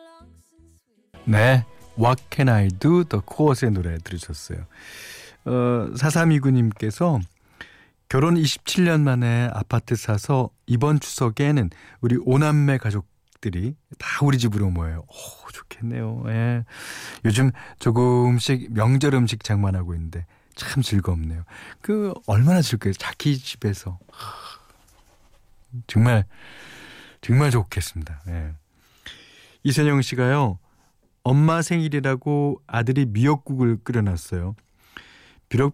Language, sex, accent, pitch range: Korean, male, native, 95-135 Hz